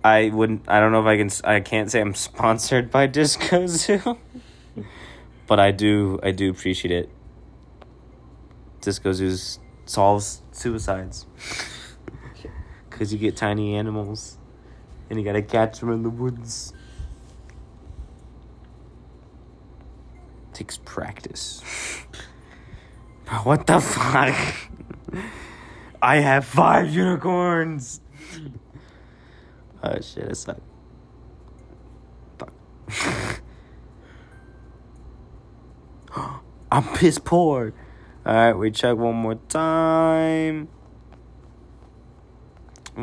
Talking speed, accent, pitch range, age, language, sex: 95 wpm, American, 80-120 Hz, 20-39, English, male